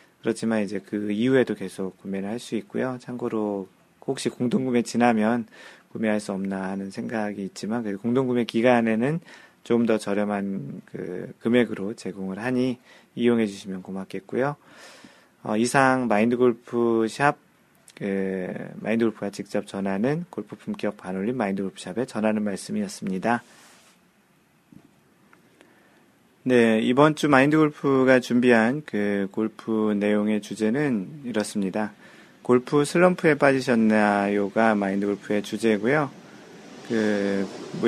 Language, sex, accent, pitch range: Korean, male, native, 100-125 Hz